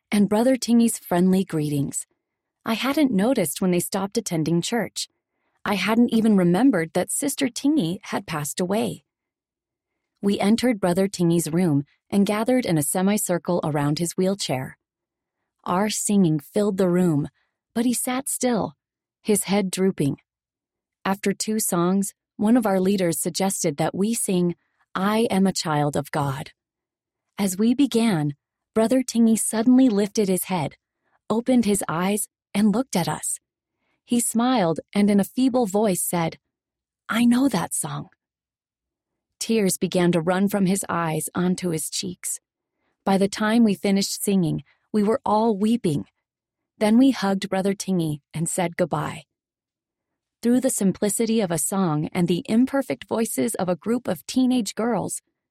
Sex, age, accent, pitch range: female, 30-49, American, 175-230 Hz